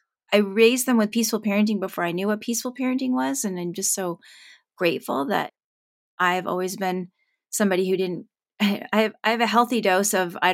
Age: 30-49